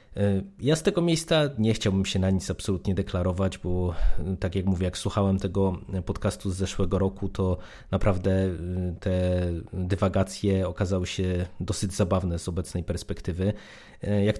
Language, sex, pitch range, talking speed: Polish, male, 90-105 Hz, 140 wpm